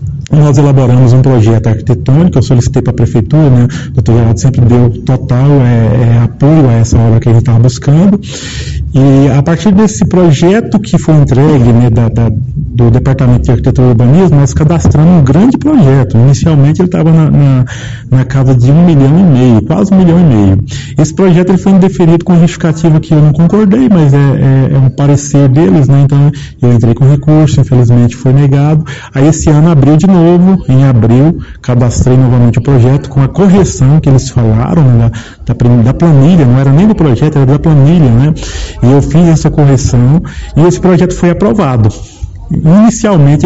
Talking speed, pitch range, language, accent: 185 wpm, 125-165 Hz, Portuguese, Brazilian